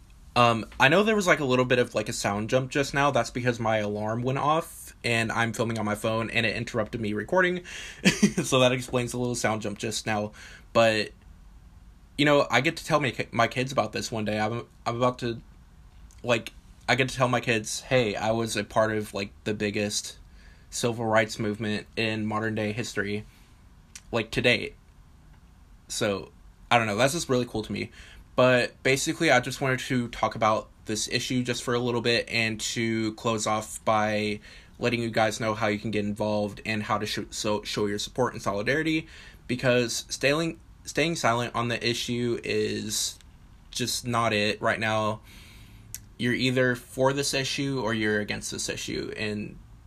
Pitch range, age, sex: 105-125 Hz, 20-39, male